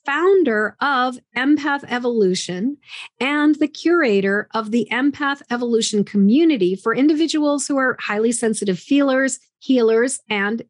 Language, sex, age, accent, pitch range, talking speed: English, female, 40-59, American, 210-280 Hz, 120 wpm